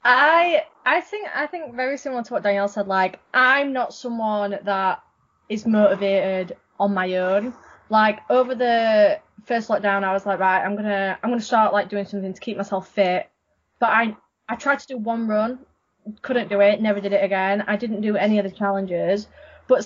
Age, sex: 20-39, female